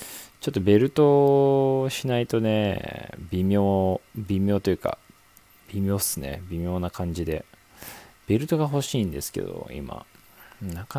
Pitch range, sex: 90-120 Hz, male